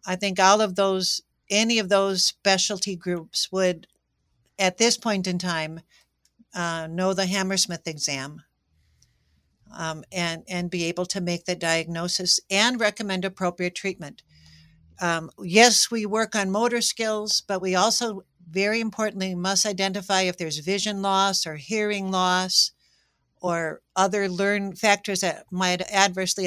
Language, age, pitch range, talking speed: English, 60-79, 170-210 Hz, 140 wpm